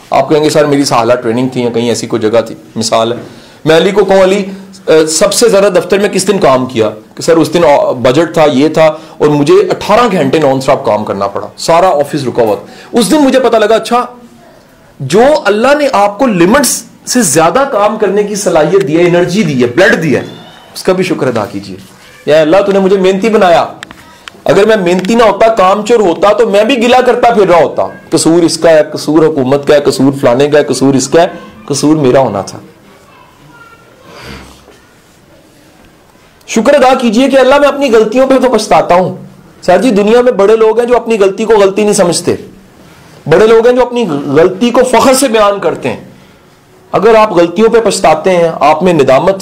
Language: English